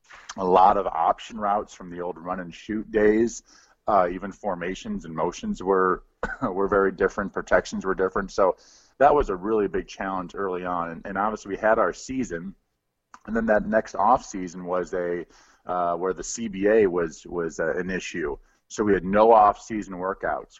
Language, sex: English, male